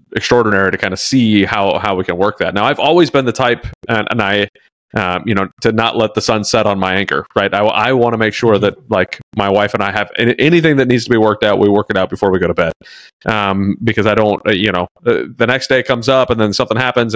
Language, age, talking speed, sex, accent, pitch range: English, 30-49, 275 wpm, male, American, 100-120 Hz